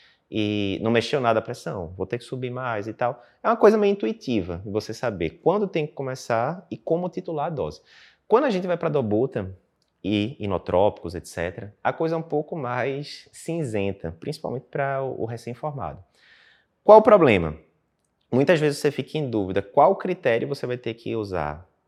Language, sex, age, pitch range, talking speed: Portuguese, male, 20-39, 105-140 Hz, 180 wpm